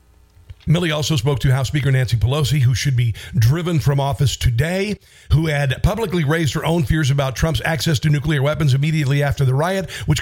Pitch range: 105-140 Hz